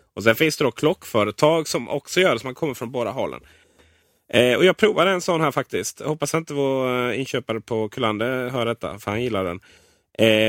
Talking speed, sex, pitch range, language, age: 215 wpm, male, 120-170 Hz, Swedish, 30-49